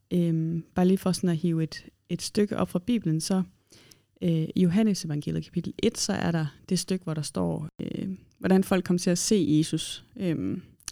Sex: female